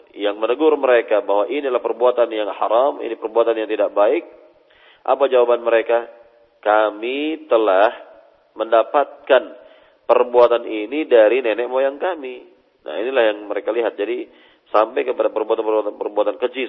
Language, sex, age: Malay, male, 40-59